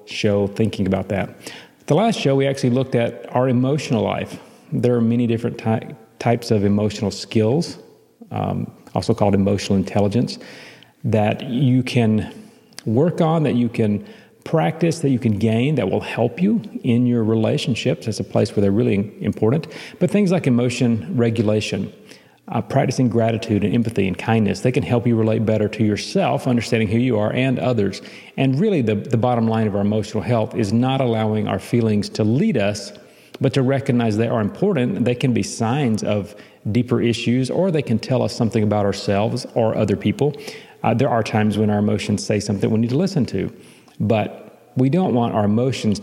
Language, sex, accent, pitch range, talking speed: English, male, American, 105-130 Hz, 185 wpm